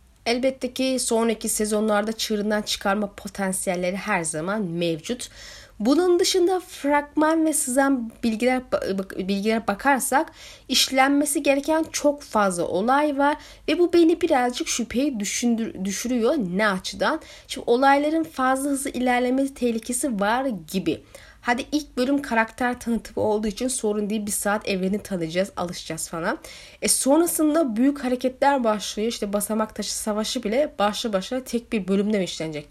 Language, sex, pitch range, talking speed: Turkish, female, 210-275 Hz, 130 wpm